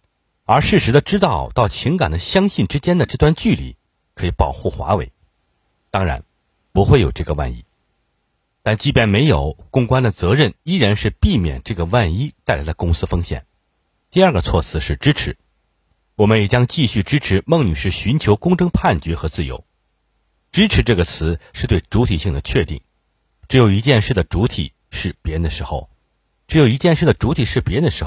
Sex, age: male, 50-69